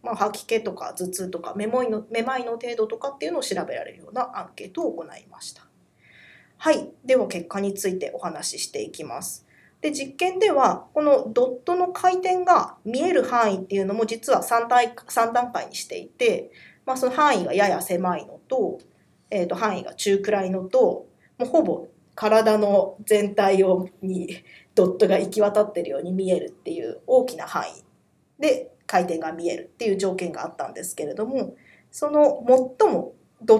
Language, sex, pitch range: Japanese, female, 195-290 Hz